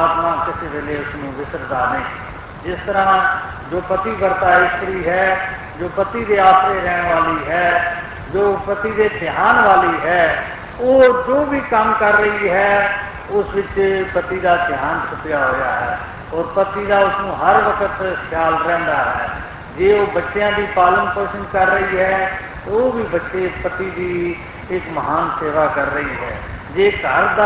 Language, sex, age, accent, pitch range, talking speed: Hindi, male, 50-69, native, 170-205 Hz, 140 wpm